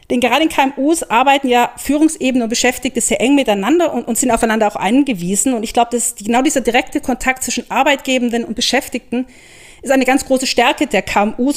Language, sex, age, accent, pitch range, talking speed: German, female, 40-59, German, 225-270 Hz, 190 wpm